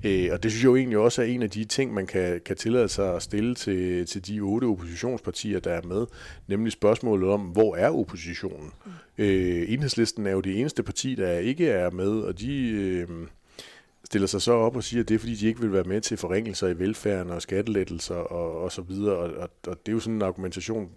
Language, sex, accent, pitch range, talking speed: Danish, male, native, 90-110 Hz, 230 wpm